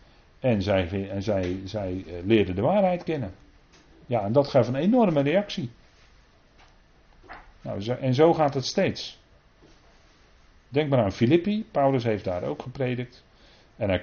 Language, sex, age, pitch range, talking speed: Dutch, male, 50-69, 95-140 Hz, 140 wpm